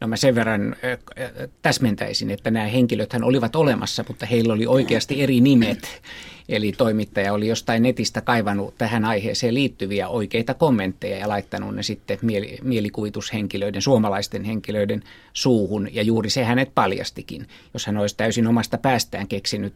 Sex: male